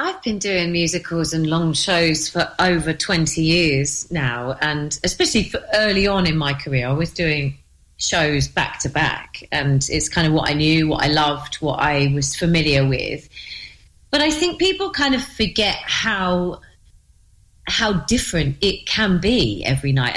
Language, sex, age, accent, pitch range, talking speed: English, female, 30-49, British, 145-205 Hz, 170 wpm